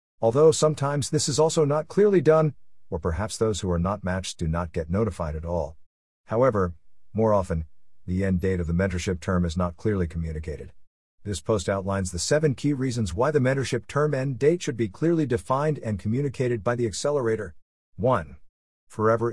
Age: 50-69